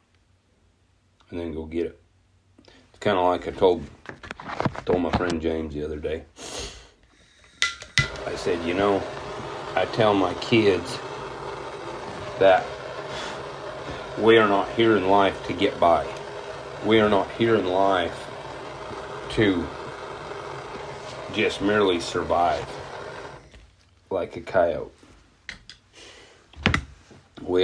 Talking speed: 110 wpm